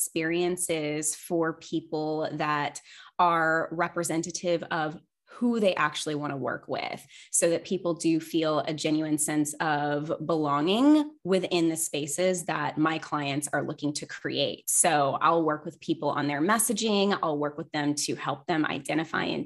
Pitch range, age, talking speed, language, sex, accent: 155-185 Hz, 20-39, 155 wpm, English, female, American